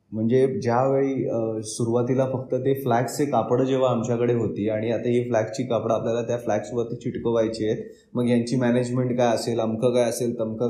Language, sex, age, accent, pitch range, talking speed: Marathi, male, 20-39, native, 115-145 Hz, 120 wpm